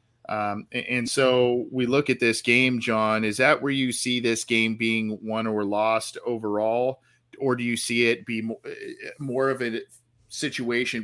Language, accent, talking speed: English, American, 170 wpm